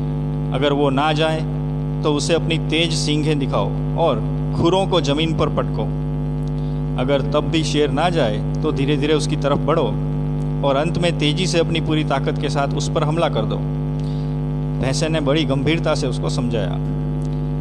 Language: Hindi